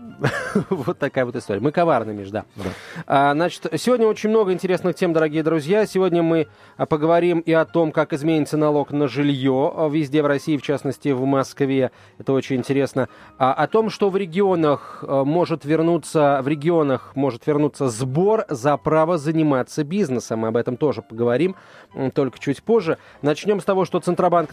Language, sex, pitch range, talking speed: Russian, male, 135-170 Hz, 160 wpm